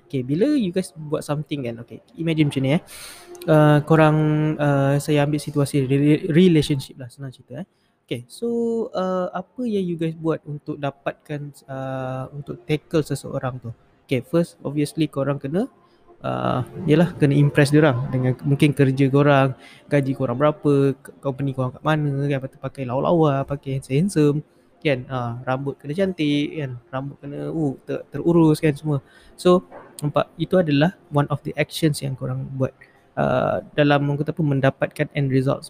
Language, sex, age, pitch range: Malay, male, 20-39, 135-160 Hz